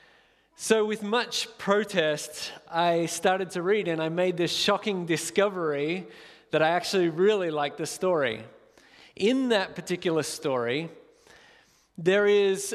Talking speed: 125 wpm